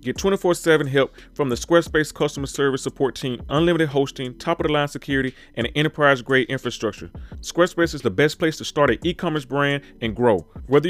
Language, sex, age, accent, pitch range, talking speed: English, male, 30-49, American, 130-165 Hz, 165 wpm